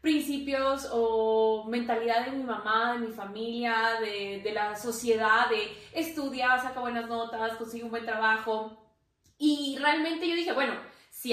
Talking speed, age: 150 wpm, 20-39